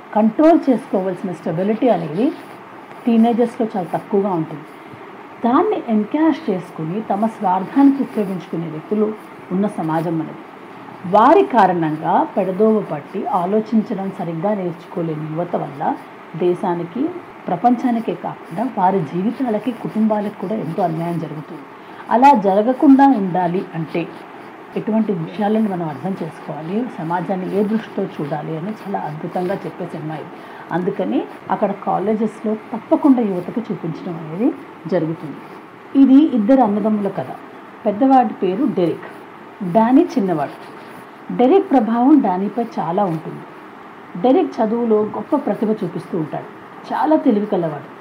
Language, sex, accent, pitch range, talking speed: Telugu, female, native, 180-240 Hz, 105 wpm